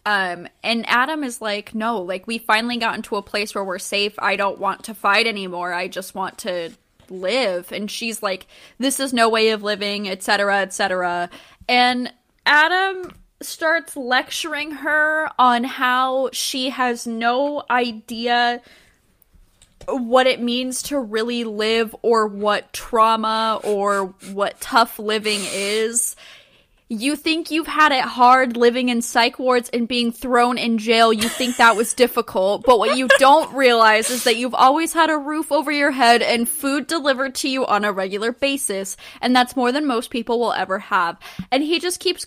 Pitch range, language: 215-270 Hz, English